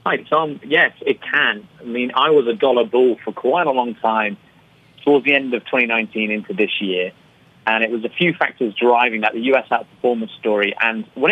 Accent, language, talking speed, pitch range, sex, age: British, English, 205 wpm, 110-155 Hz, male, 30-49